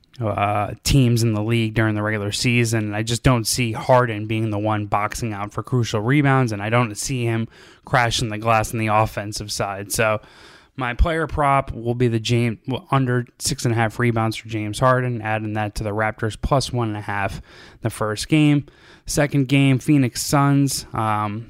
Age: 20-39